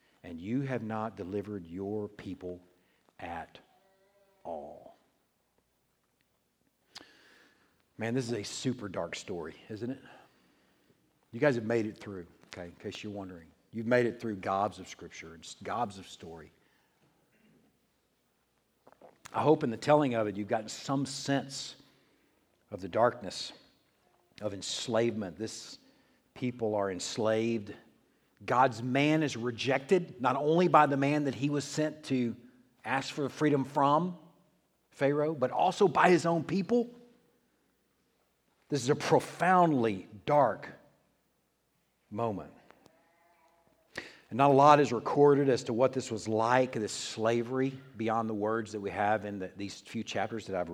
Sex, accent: male, American